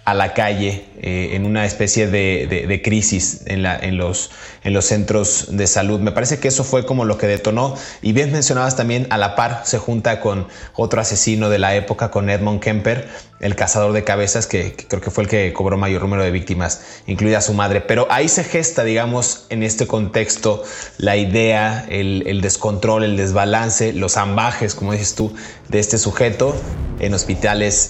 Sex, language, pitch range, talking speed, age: male, Spanish, 100-110 Hz, 195 wpm, 20-39